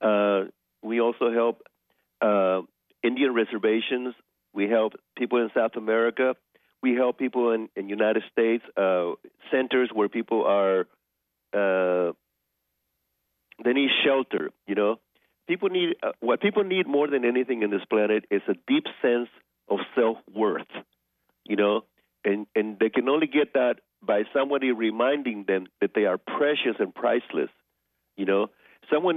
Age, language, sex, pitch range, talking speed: 50-69, English, male, 100-130 Hz, 145 wpm